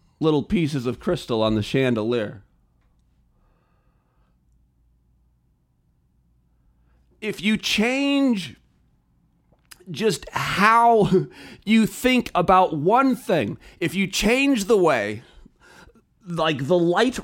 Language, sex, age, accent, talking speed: English, male, 40-59, American, 85 wpm